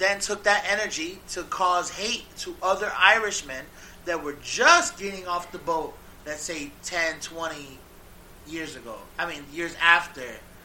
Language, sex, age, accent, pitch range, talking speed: English, male, 30-49, American, 165-225 Hz, 150 wpm